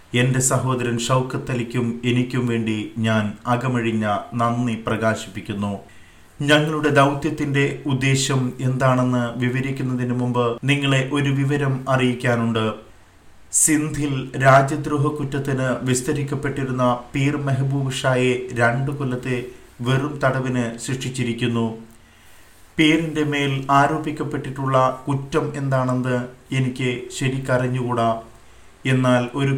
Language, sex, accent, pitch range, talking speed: Malayalam, male, native, 120-140 Hz, 80 wpm